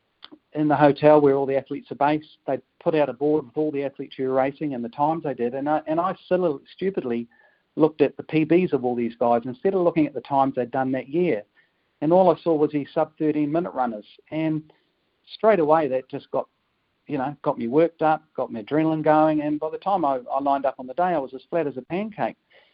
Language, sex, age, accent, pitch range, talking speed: English, male, 50-69, Australian, 130-170 Hz, 255 wpm